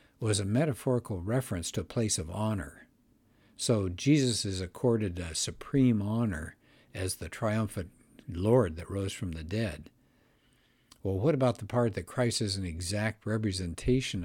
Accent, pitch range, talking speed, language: American, 95-125 Hz, 150 wpm, English